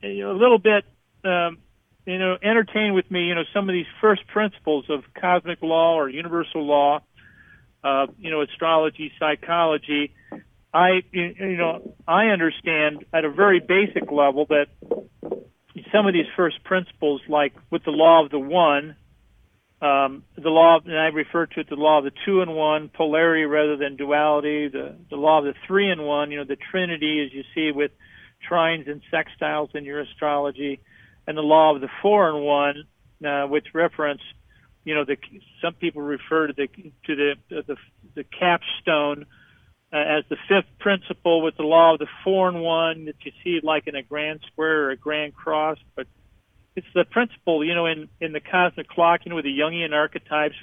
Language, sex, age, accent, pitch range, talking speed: English, male, 40-59, American, 145-170 Hz, 185 wpm